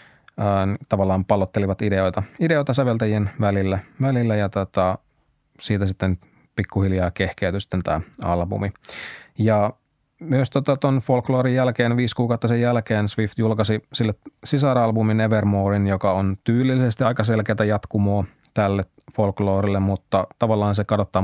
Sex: male